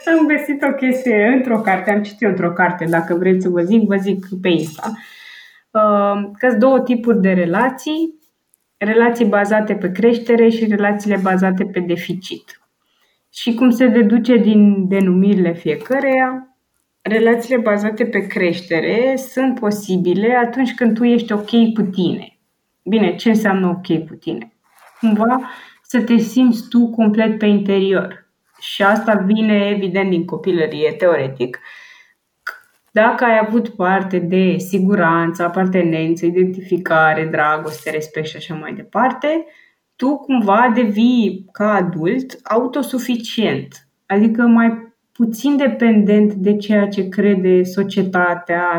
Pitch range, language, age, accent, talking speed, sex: 185-235 Hz, Romanian, 20-39, native, 125 wpm, female